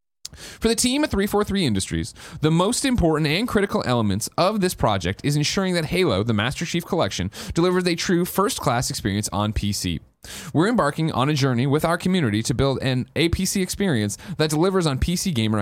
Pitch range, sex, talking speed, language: 110-170 Hz, male, 185 wpm, English